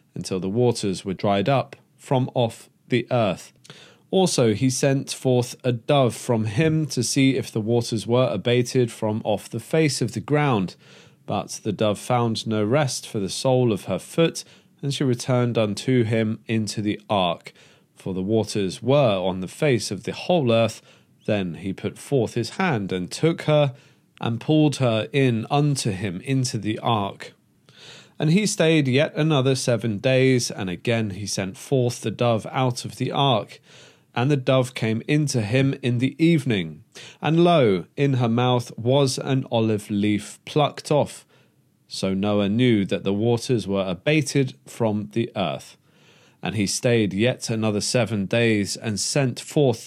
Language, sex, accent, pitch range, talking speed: English, male, British, 105-135 Hz, 170 wpm